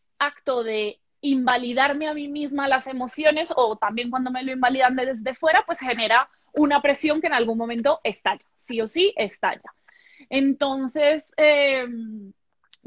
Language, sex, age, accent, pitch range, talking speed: Spanish, female, 20-39, Colombian, 245-295 Hz, 145 wpm